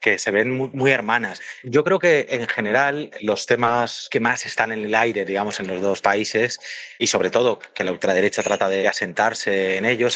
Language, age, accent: Spanish, 30-49, Spanish